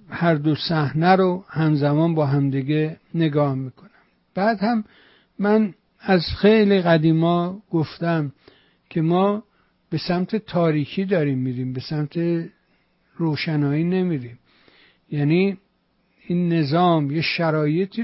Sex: male